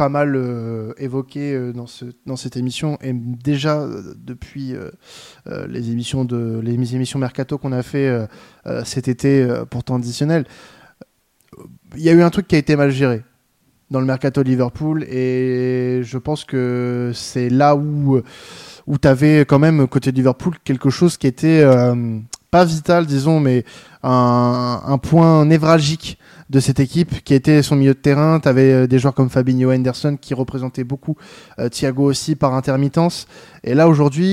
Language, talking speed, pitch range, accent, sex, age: French, 175 wpm, 125-150 Hz, French, male, 20-39